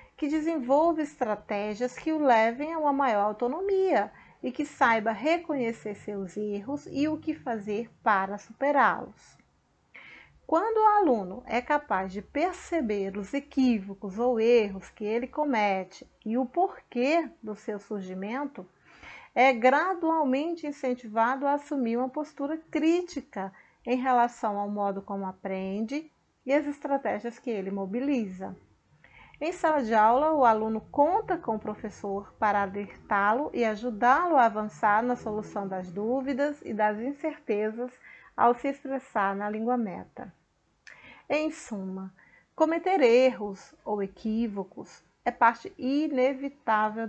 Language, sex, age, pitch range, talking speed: Portuguese, female, 40-59, 210-290 Hz, 130 wpm